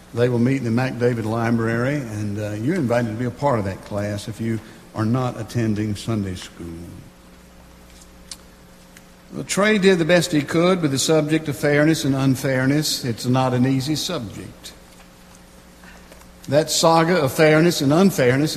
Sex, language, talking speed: male, English, 165 wpm